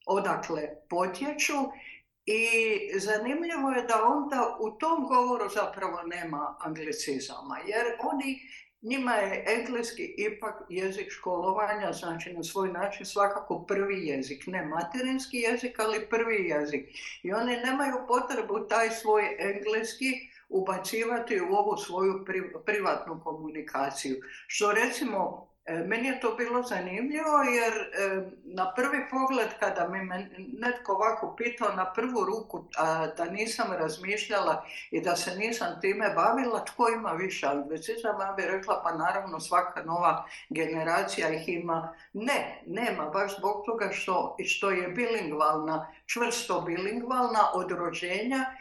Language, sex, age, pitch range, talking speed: Croatian, female, 60-79, 175-240 Hz, 130 wpm